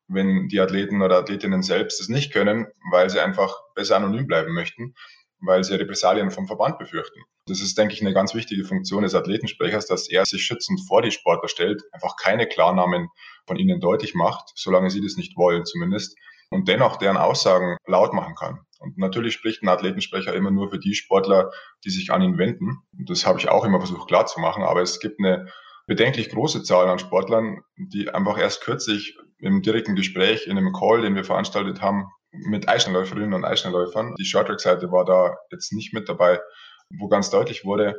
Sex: male